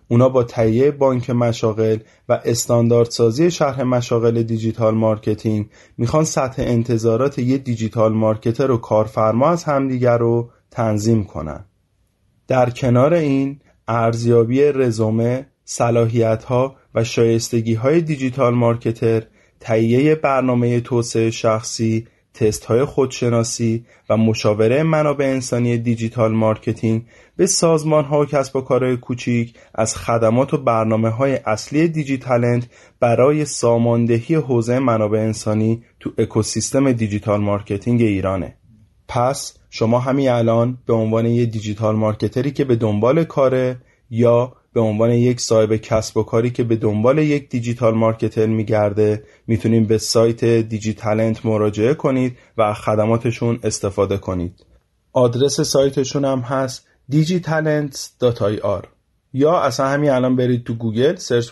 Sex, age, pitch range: male, 30-49, 110-130 Hz